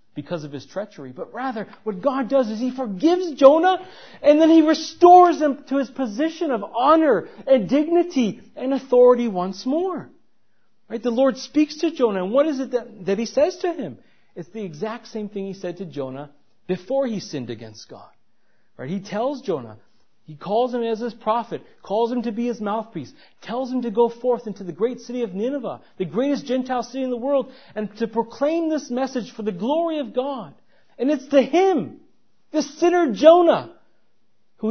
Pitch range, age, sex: 195-270 Hz, 40-59, male